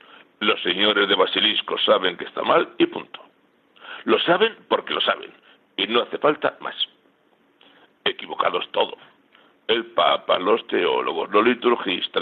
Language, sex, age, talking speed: Spanish, male, 60-79, 135 wpm